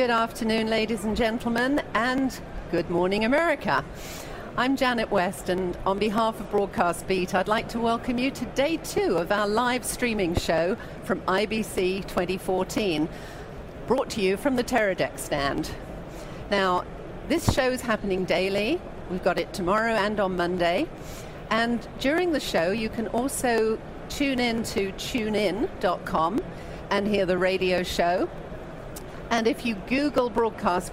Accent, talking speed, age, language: British, 145 wpm, 50-69, English